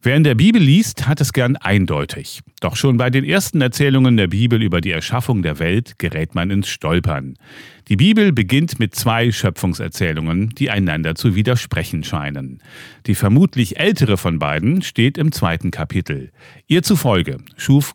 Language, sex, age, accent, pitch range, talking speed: German, male, 40-59, German, 90-130 Hz, 165 wpm